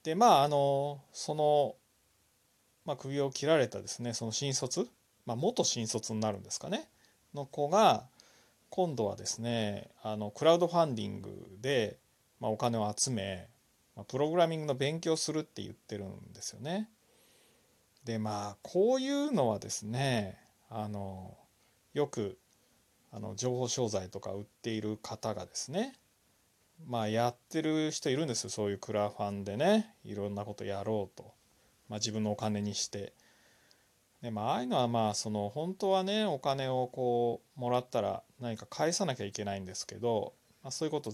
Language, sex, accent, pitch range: Japanese, male, native, 105-145 Hz